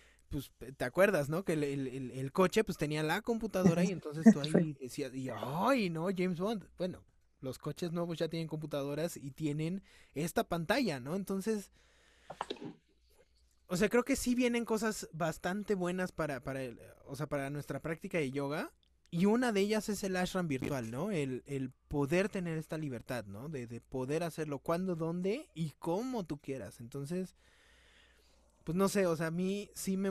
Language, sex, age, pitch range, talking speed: Spanish, male, 20-39, 140-185 Hz, 180 wpm